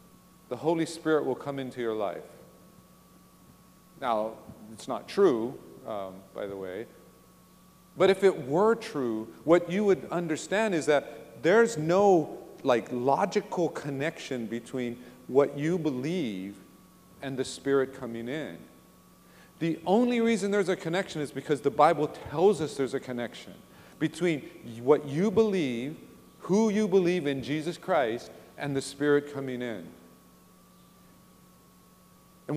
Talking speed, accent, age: 135 wpm, American, 40-59